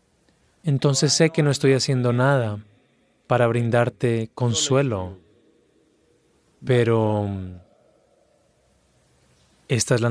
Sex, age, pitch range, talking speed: male, 20-39, 105-130 Hz, 85 wpm